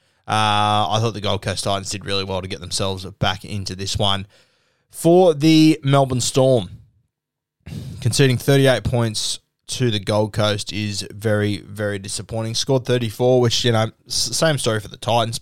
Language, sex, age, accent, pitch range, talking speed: English, male, 20-39, Australian, 100-120 Hz, 165 wpm